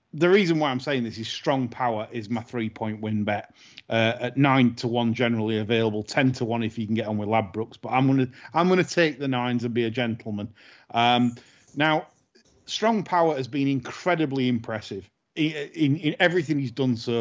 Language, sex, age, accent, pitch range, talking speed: English, male, 30-49, British, 115-145 Hz, 205 wpm